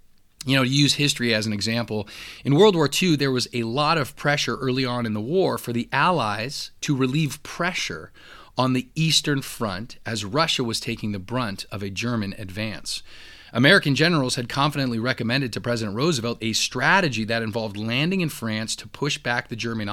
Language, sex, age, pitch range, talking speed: English, male, 30-49, 110-140 Hz, 190 wpm